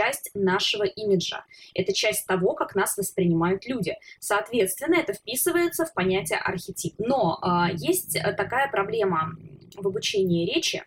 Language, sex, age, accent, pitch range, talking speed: Russian, female, 20-39, native, 180-255 Hz, 135 wpm